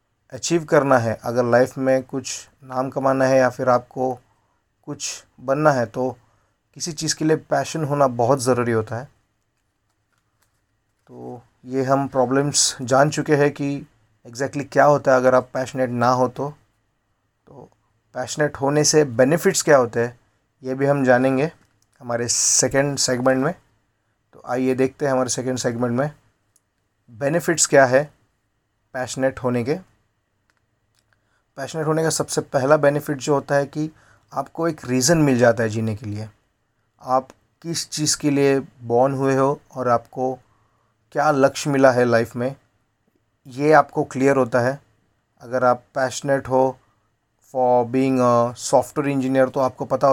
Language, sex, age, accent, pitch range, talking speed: Hindi, male, 30-49, native, 115-140 Hz, 150 wpm